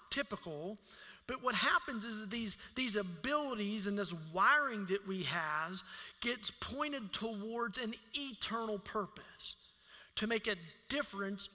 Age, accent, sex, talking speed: 40-59, American, male, 130 wpm